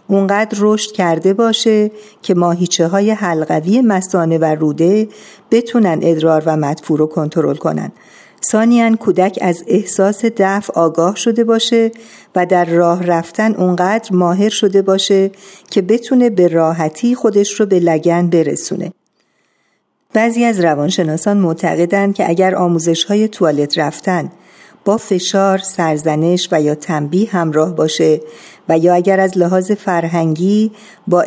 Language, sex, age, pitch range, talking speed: Persian, female, 50-69, 165-210 Hz, 130 wpm